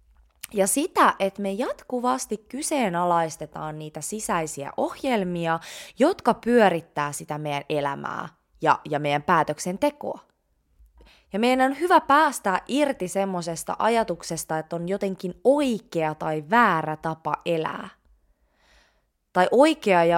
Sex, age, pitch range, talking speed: female, 20-39, 155-245 Hz, 105 wpm